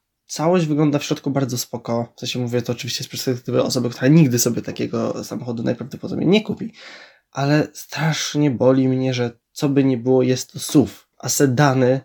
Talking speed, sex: 190 wpm, male